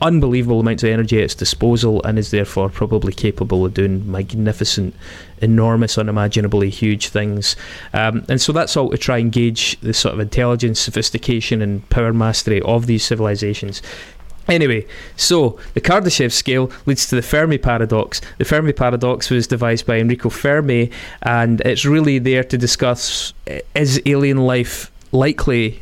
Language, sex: English, male